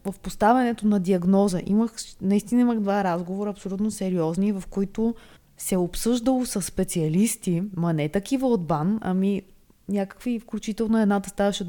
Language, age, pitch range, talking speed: Bulgarian, 20-39, 175-225 Hz, 140 wpm